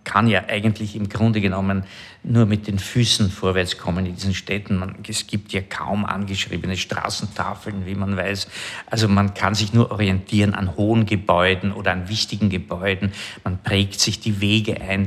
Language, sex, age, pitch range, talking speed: German, male, 50-69, 95-110 Hz, 180 wpm